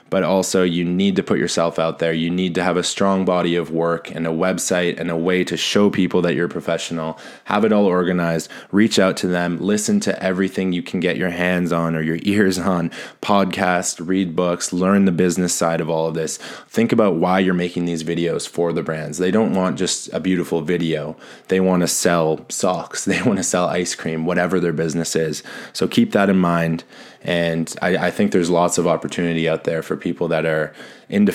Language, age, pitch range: English, 20-39, 85-95 Hz